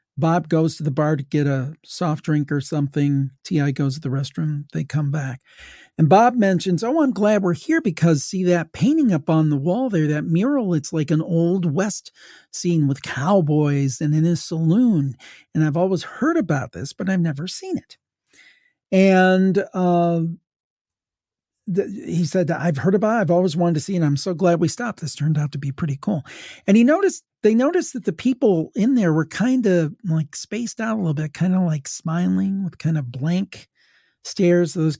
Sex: male